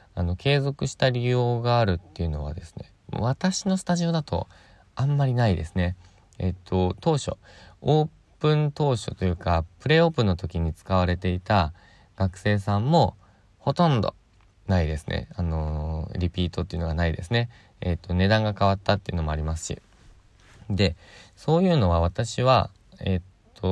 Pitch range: 90-120 Hz